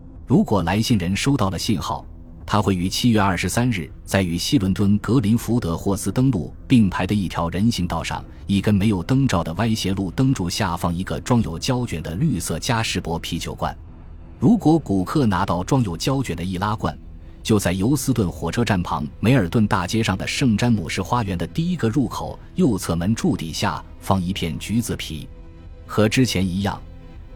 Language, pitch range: Chinese, 85-110 Hz